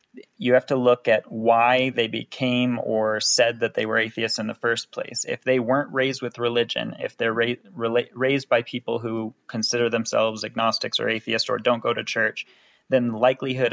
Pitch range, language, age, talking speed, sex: 110-120 Hz, English, 20-39, 190 wpm, male